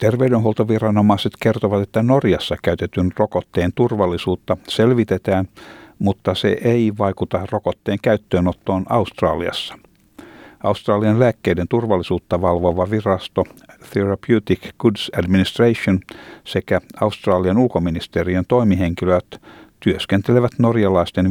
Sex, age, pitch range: male, 60-79, 90-110 Hz